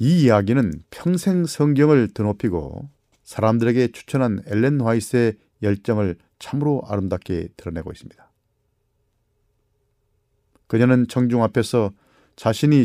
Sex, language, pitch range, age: male, Korean, 105-130 Hz, 40-59